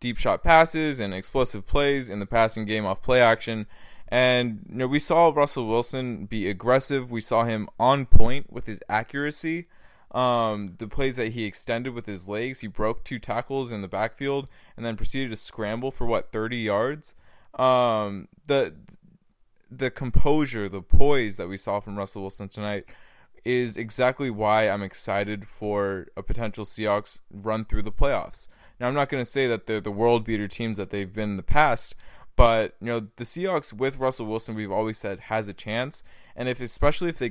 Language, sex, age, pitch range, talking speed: English, male, 20-39, 105-125 Hz, 190 wpm